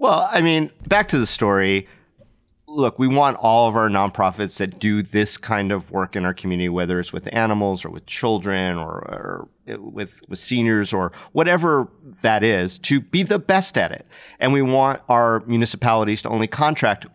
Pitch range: 100-130 Hz